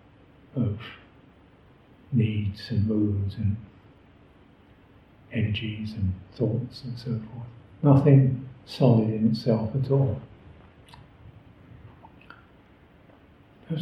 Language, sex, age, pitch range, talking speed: English, male, 50-69, 105-135 Hz, 80 wpm